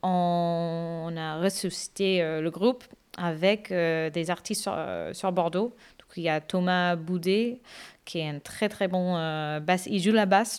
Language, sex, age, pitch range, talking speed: French, female, 30-49, 155-185 Hz, 180 wpm